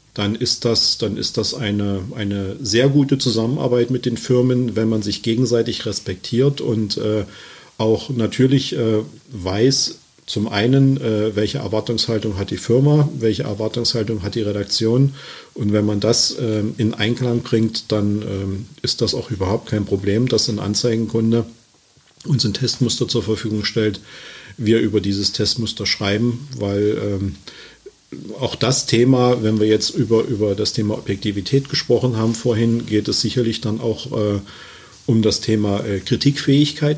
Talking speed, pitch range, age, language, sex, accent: 150 wpm, 105-125 Hz, 40-59, German, male, German